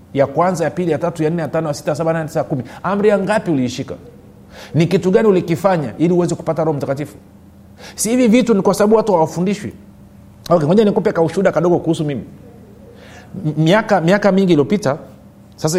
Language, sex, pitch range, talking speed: Swahili, male, 130-175 Hz, 200 wpm